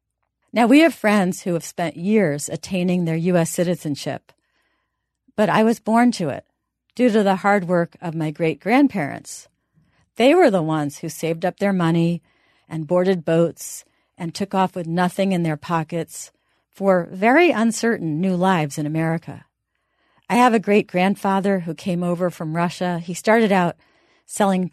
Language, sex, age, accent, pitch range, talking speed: English, female, 50-69, American, 165-205 Hz, 160 wpm